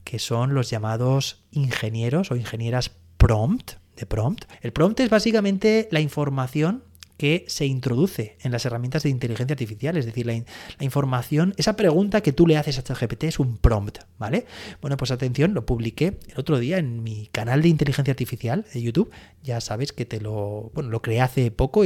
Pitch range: 115-165 Hz